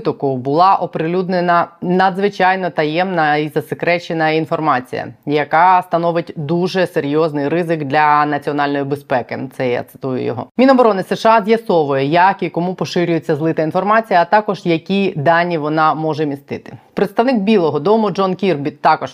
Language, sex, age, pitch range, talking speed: Ukrainian, female, 20-39, 150-190 Hz, 130 wpm